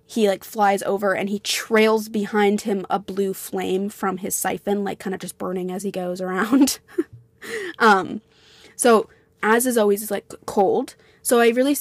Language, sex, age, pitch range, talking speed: English, female, 20-39, 195-230 Hz, 175 wpm